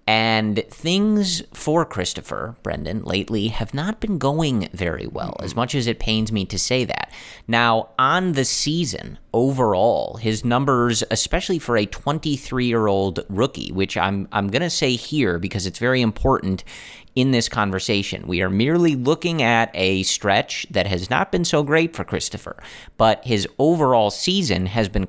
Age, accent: 30-49, American